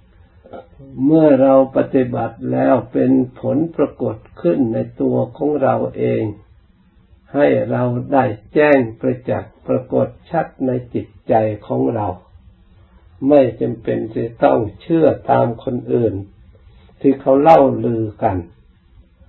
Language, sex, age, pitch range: Thai, male, 60-79, 90-130 Hz